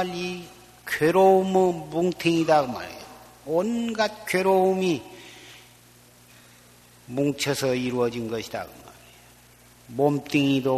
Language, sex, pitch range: Korean, male, 120-150 Hz